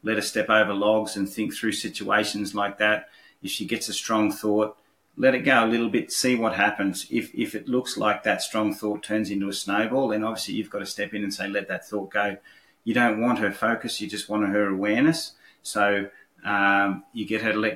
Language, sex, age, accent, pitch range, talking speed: English, male, 30-49, Australian, 105-110 Hz, 230 wpm